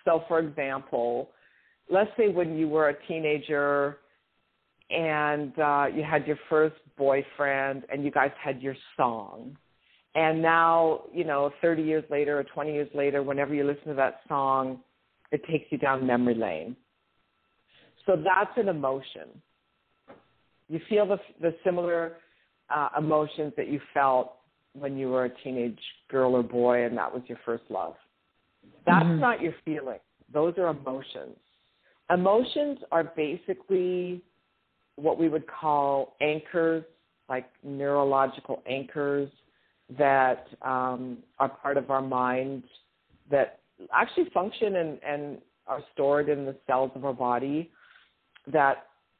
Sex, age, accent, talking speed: female, 50-69, American, 140 wpm